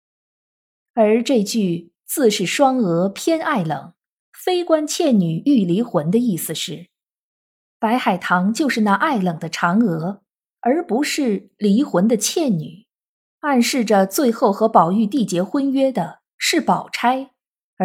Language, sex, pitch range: Chinese, female, 185-270 Hz